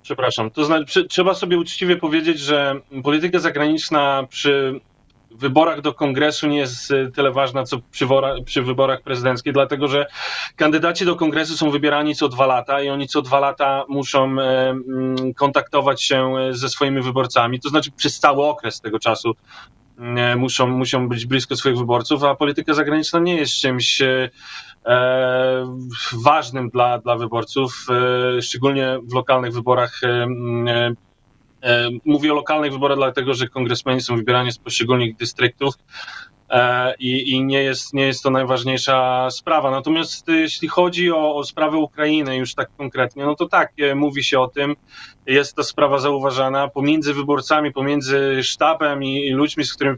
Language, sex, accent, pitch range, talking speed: Polish, male, native, 125-145 Hz, 145 wpm